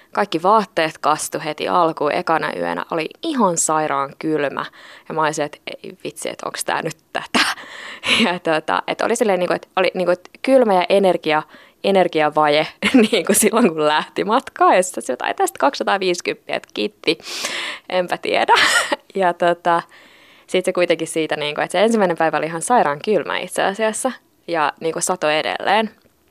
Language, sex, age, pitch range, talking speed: Finnish, female, 20-39, 165-195 Hz, 160 wpm